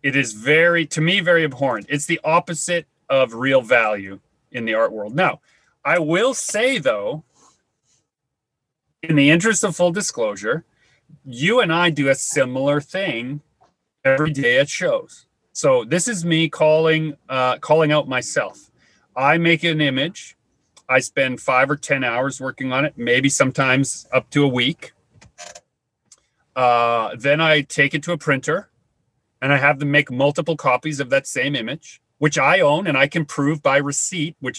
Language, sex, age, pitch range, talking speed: English, male, 30-49, 130-165 Hz, 165 wpm